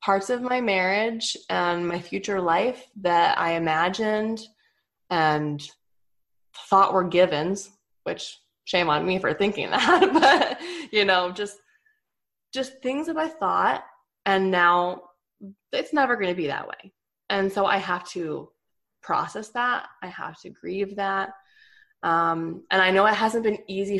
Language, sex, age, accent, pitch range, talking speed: English, female, 20-39, American, 175-235 Hz, 150 wpm